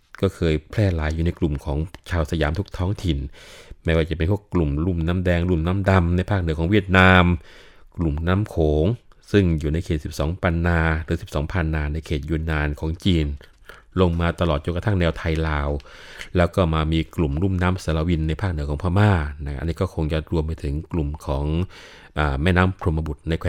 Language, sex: Thai, male